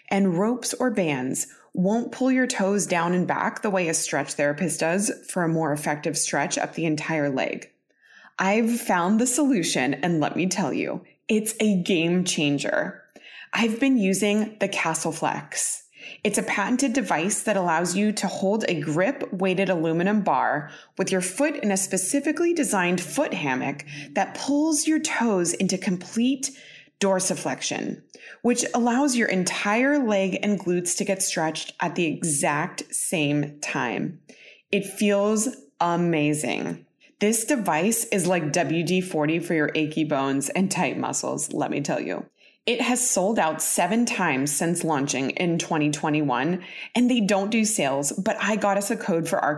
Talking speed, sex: 155 wpm, female